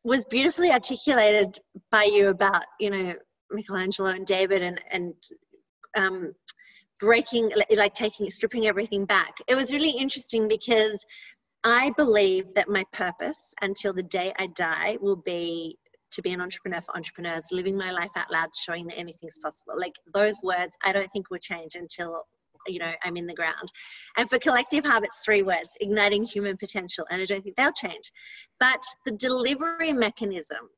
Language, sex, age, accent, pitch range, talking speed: English, female, 30-49, Australian, 185-225 Hz, 170 wpm